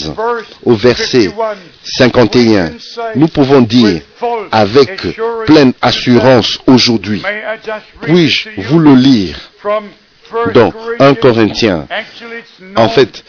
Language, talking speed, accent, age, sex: French, 85 wpm, French, 50-69, male